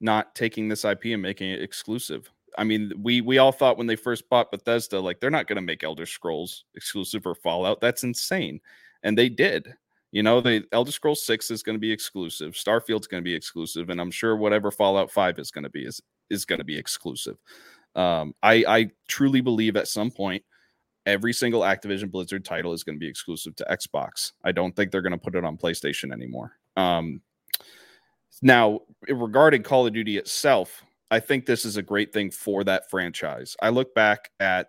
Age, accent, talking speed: 30-49, American, 205 wpm